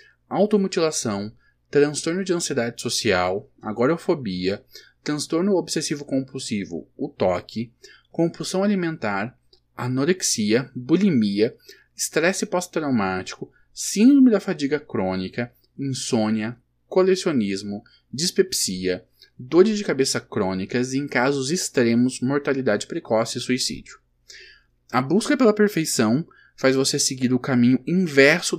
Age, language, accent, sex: 10-29, Portuguese, Brazilian, male